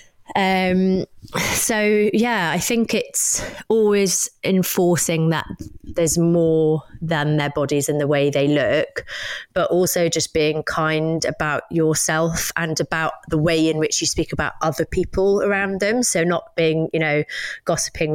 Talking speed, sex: 150 wpm, female